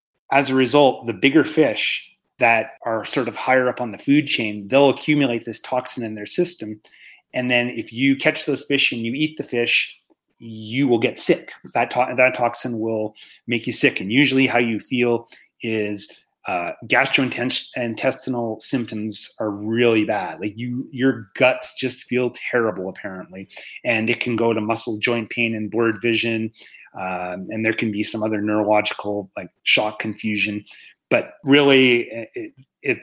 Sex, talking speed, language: male, 165 wpm, English